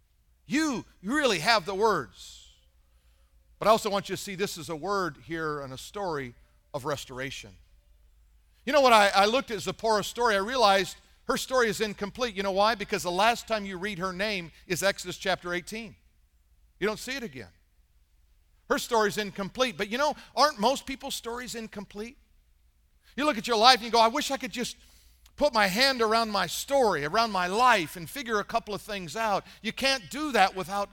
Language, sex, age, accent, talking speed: English, male, 50-69, American, 200 wpm